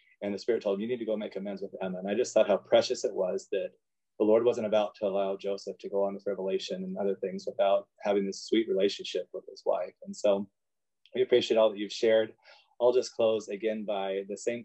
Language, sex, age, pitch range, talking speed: English, male, 30-49, 100-130 Hz, 245 wpm